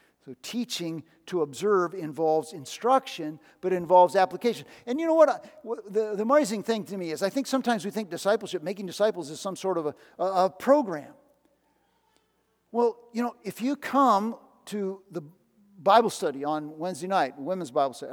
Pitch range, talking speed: 175-230 Hz, 175 wpm